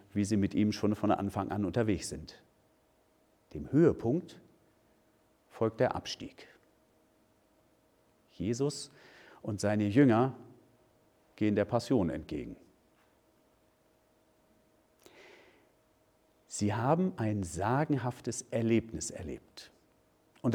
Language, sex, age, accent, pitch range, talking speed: German, male, 50-69, German, 100-140 Hz, 90 wpm